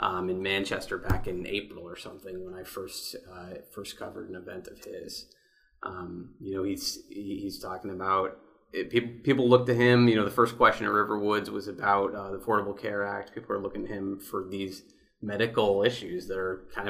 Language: English